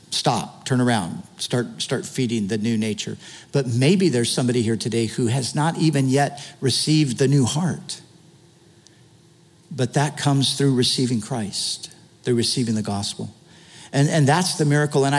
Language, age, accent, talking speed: English, 50-69, American, 160 wpm